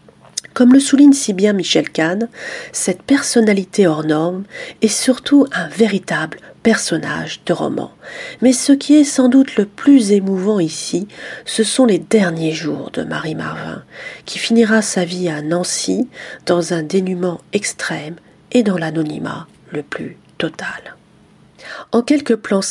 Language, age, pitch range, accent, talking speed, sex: French, 40-59, 180-250 Hz, French, 145 wpm, female